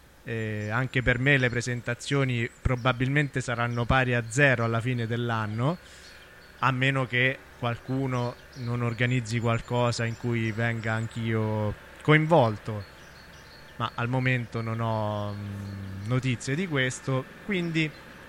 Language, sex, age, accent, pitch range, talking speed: Italian, male, 20-39, native, 120-145 Hz, 115 wpm